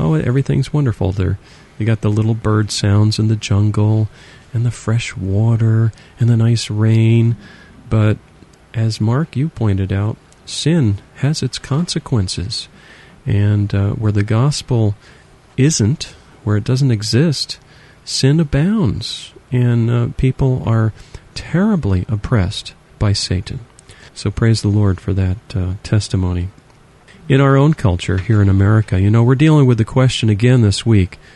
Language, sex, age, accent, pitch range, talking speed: English, male, 40-59, American, 100-130 Hz, 145 wpm